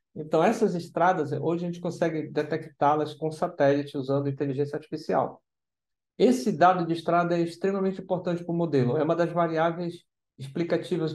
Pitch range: 145-185 Hz